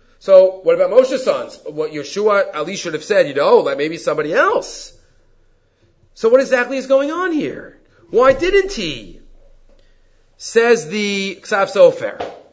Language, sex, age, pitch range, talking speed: English, male, 40-59, 185-285 Hz, 155 wpm